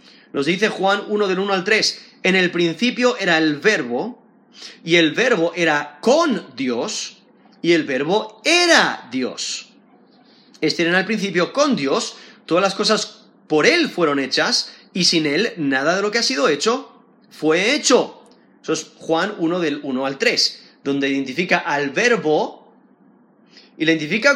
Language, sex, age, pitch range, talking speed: Spanish, male, 30-49, 155-230 Hz, 155 wpm